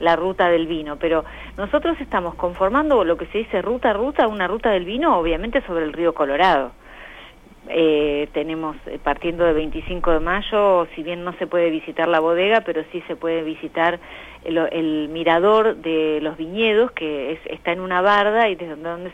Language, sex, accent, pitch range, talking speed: Spanish, female, Argentinian, 160-195 Hz, 180 wpm